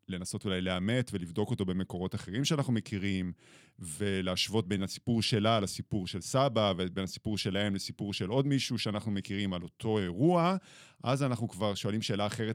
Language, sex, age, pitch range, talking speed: Hebrew, male, 30-49, 100-125 Hz, 150 wpm